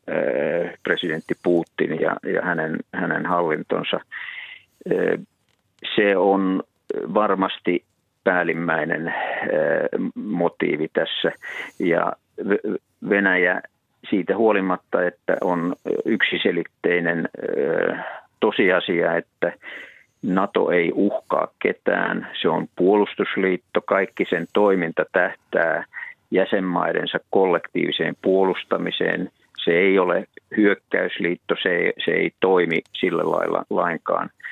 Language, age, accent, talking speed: Finnish, 50-69, native, 80 wpm